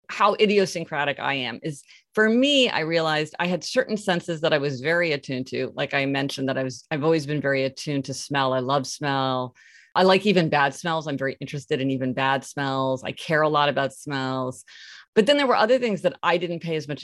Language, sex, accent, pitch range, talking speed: English, female, American, 135-180 Hz, 230 wpm